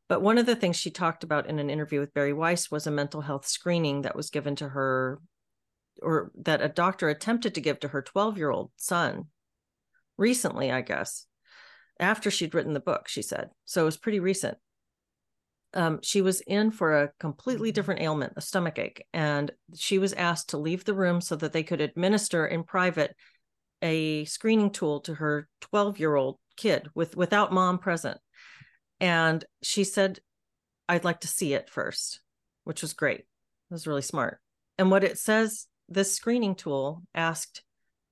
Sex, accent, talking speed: female, American, 175 wpm